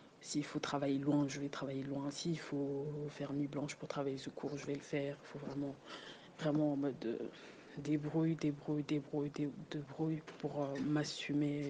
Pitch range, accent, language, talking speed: 145-160 Hz, French, French, 175 wpm